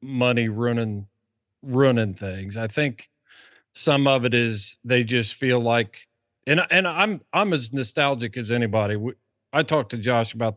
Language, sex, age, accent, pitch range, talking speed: English, male, 40-59, American, 110-135 Hz, 160 wpm